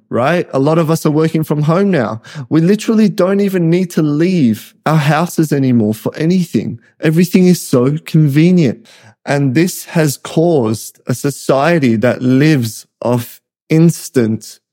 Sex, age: male, 20-39